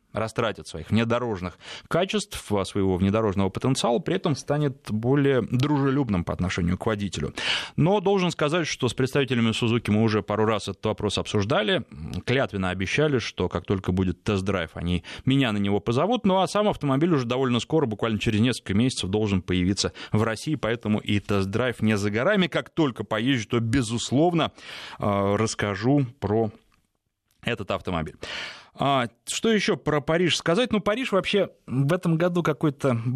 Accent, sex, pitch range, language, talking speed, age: native, male, 105-150 Hz, Russian, 150 wpm, 20-39